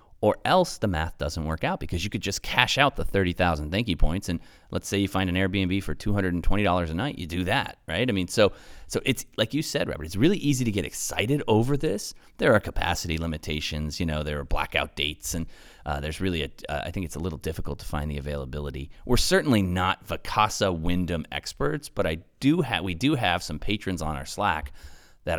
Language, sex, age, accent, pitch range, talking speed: English, male, 30-49, American, 75-105 Hz, 235 wpm